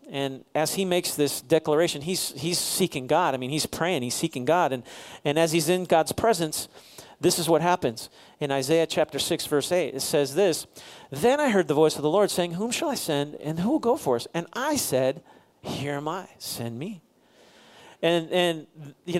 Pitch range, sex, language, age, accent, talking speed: 155-210 Hz, male, English, 40-59, American, 210 wpm